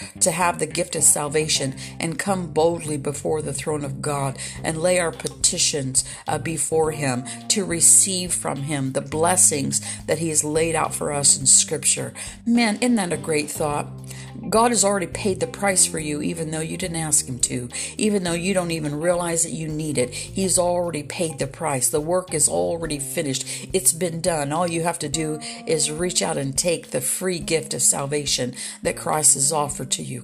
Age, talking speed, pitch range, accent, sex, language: 60-79, 200 wpm, 145-190 Hz, American, female, English